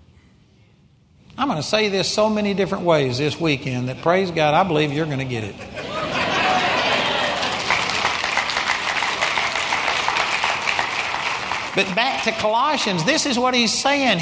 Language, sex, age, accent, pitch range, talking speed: English, male, 60-79, American, 145-215 Hz, 125 wpm